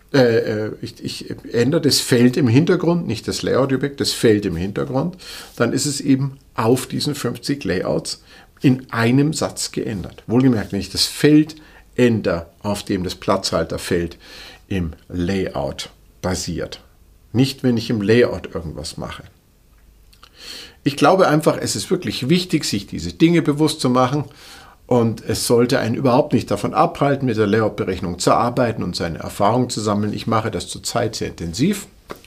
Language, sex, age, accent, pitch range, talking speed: German, male, 50-69, German, 90-130 Hz, 155 wpm